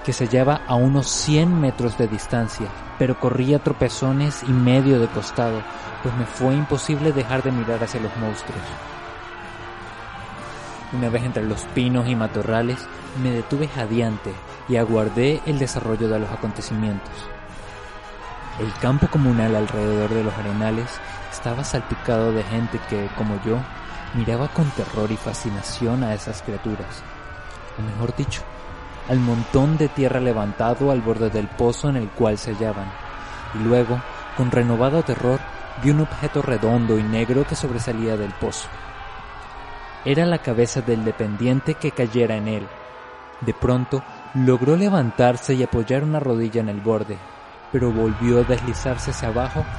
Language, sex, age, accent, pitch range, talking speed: Spanish, male, 20-39, Mexican, 110-130 Hz, 150 wpm